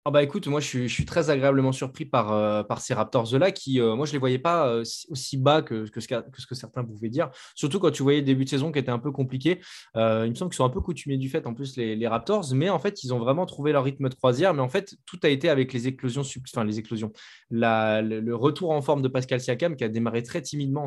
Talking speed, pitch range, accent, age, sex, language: 295 wpm, 115-145 Hz, French, 20-39, male, French